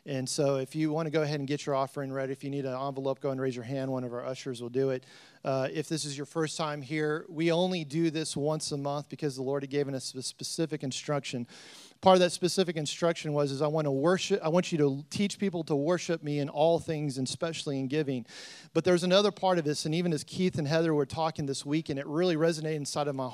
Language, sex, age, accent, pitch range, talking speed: English, male, 40-59, American, 145-180 Hz, 265 wpm